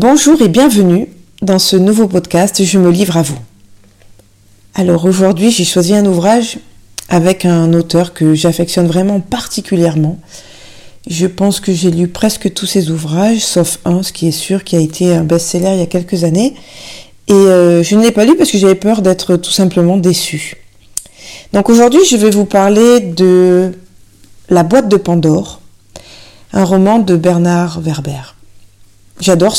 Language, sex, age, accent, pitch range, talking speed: French, female, 40-59, French, 170-200 Hz, 165 wpm